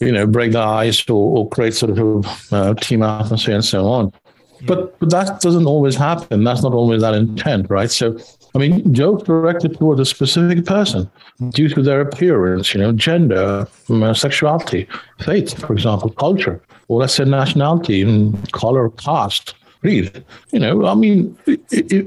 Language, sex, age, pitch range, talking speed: English, male, 60-79, 110-165 Hz, 170 wpm